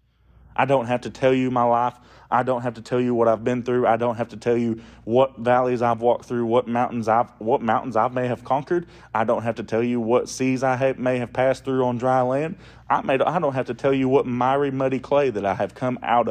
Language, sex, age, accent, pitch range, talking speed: English, male, 30-49, American, 115-135 Hz, 265 wpm